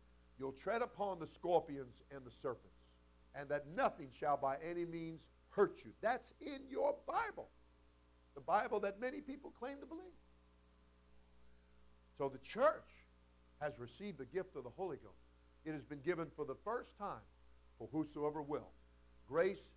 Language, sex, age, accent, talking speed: English, male, 50-69, American, 160 wpm